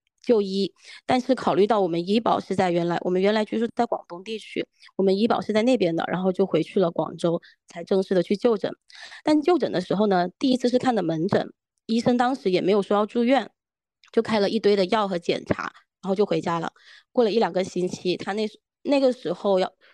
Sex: female